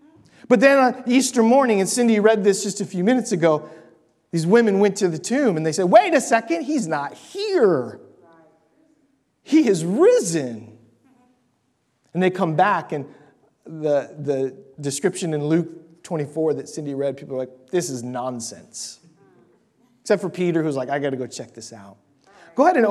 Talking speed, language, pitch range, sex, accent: 175 wpm, English, 150-215 Hz, male, American